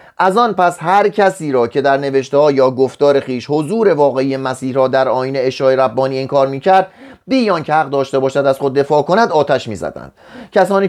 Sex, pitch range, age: male, 135-195 Hz, 30-49